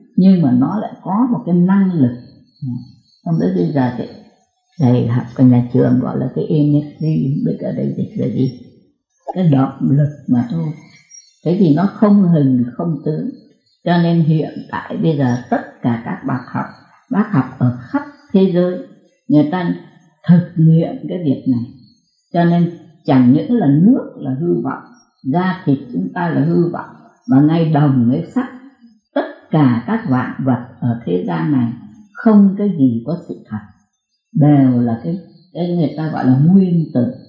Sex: female